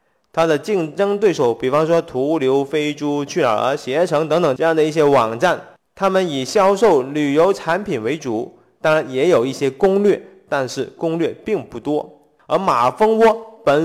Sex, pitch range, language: male, 140-200 Hz, Chinese